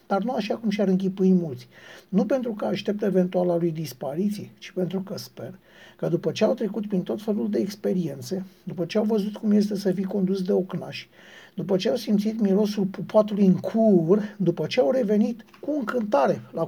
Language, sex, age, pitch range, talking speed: Romanian, male, 60-79, 165-200 Hz, 195 wpm